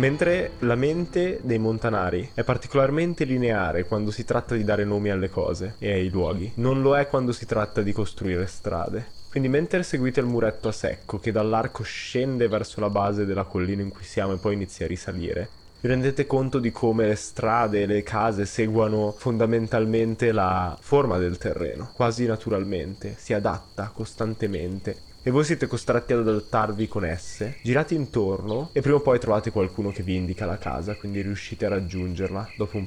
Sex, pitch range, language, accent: male, 100-125 Hz, Italian, native